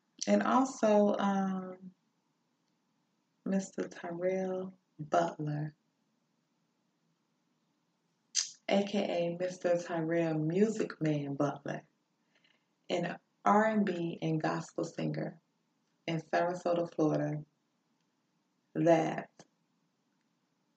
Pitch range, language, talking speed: 155-190 Hz, English, 60 wpm